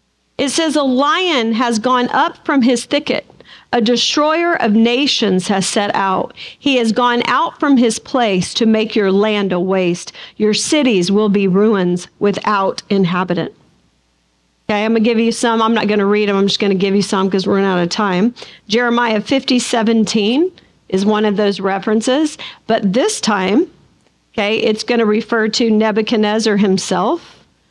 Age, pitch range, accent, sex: 50-69, 200-255 Hz, American, female